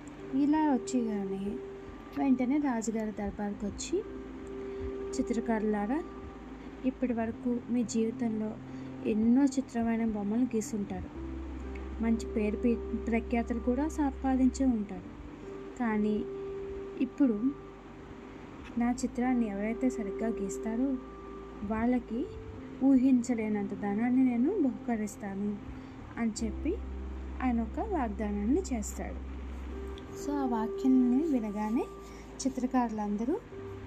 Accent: native